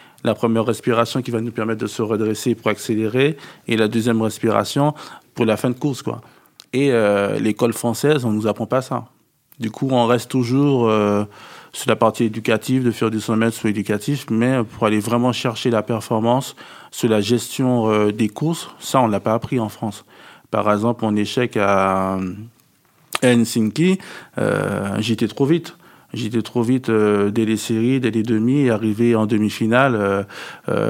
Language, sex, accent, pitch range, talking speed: French, male, French, 110-125 Hz, 185 wpm